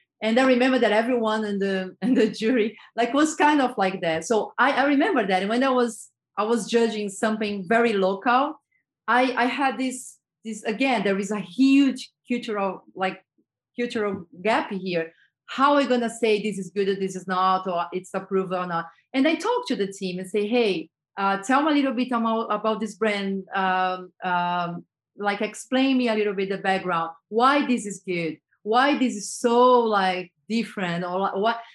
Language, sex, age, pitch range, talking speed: English, female, 30-49, 190-245 Hz, 195 wpm